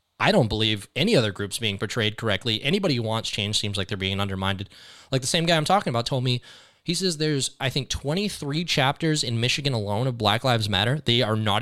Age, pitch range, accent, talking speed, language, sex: 20-39, 110-140 Hz, American, 225 wpm, English, male